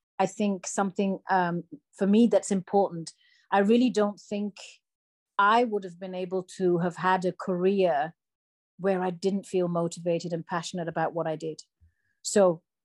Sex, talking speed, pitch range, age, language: female, 160 wpm, 180-215 Hz, 40-59, English